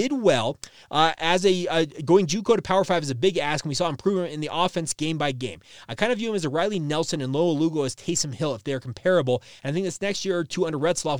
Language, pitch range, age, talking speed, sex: English, 135-175 Hz, 30-49, 285 wpm, male